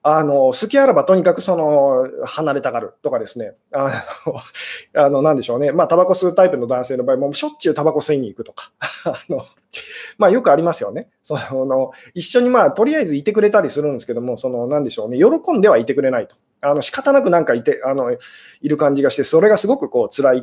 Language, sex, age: Japanese, male, 20-39